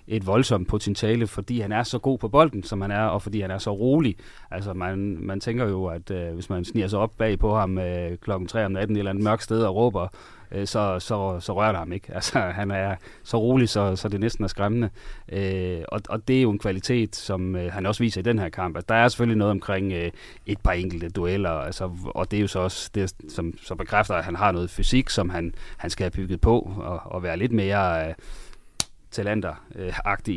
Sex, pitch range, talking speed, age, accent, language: male, 95-110 Hz, 245 wpm, 30-49, native, Danish